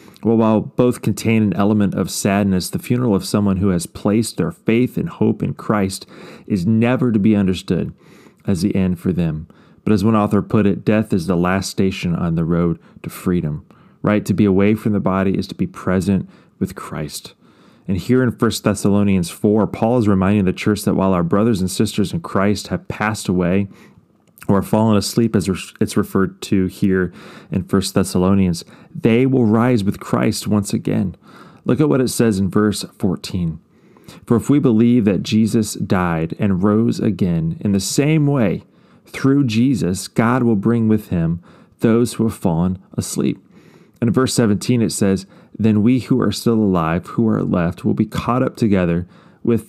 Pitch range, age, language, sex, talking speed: 95-115 Hz, 30-49, English, male, 185 wpm